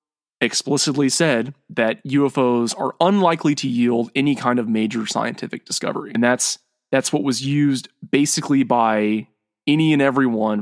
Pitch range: 115-145 Hz